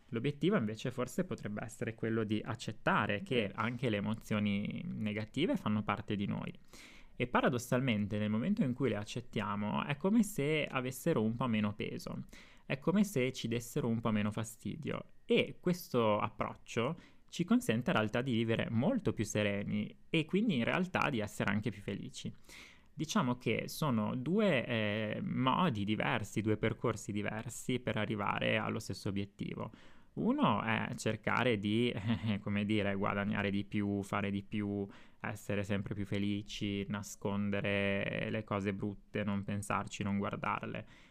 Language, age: Italian, 20-39